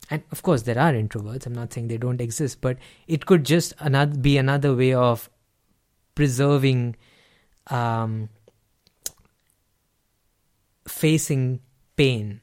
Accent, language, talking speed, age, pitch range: Indian, English, 115 wpm, 20-39, 115-145 Hz